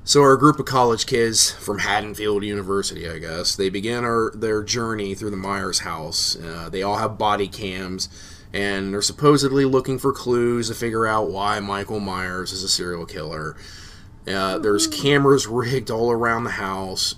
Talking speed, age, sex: 170 wpm, 30-49, male